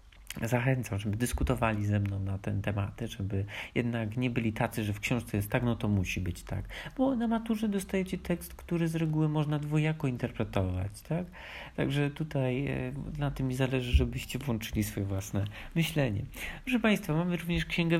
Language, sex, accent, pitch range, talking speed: Polish, male, native, 100-135 Hz, 170 wpm